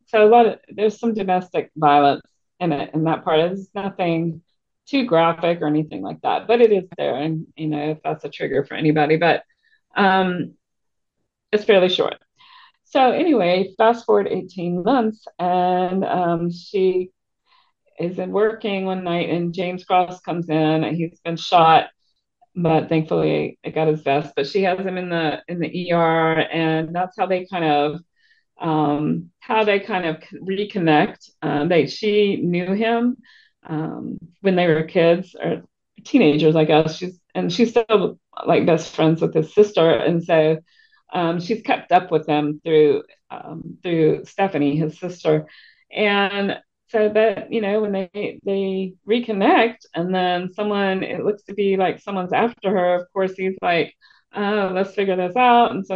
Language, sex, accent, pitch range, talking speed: English, female, American, 165-205 Hz, 170 wpm